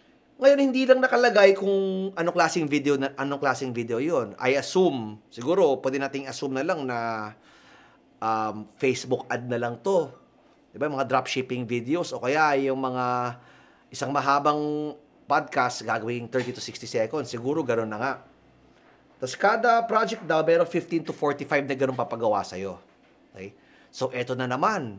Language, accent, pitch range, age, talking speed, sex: Filipino, native, 125-190 Hz, 30-49, 170 wpm, male